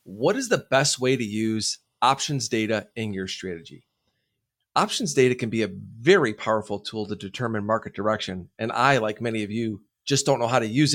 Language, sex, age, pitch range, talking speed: English, male, 30-49, 110-140 Hz, 195 wpm